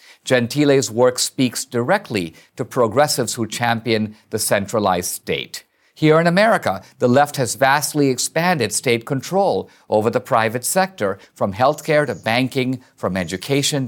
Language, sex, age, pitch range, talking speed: English, male, 50-69, 110-155 Hz, 135 wpm